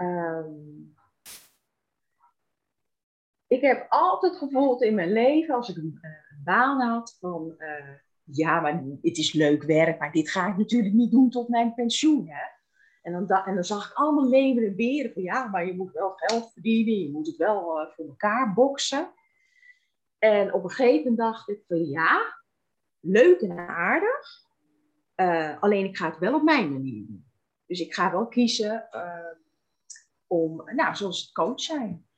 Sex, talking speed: female, 170 wpm